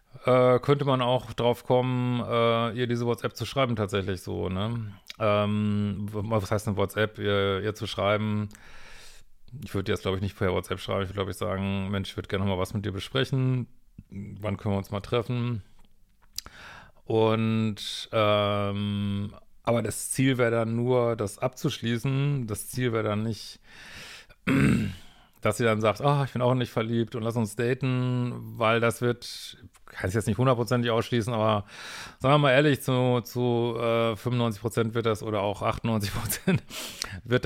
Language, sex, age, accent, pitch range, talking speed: German, male, 40-59, German, 105-120 Hz, 170 wpm